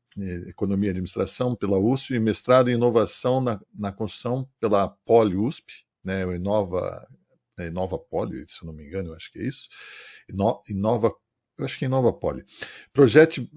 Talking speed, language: 170 wpm, Portuguese